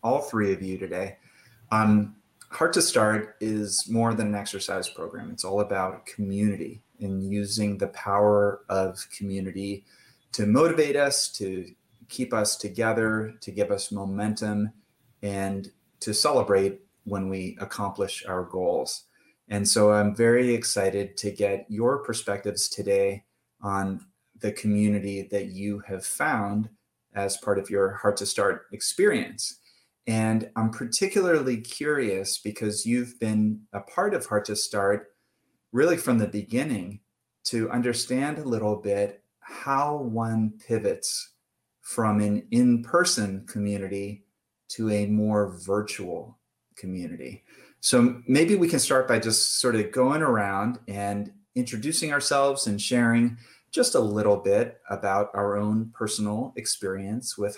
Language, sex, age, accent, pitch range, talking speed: English, male, 30-49, American, 100-115 Hz, 135 wpm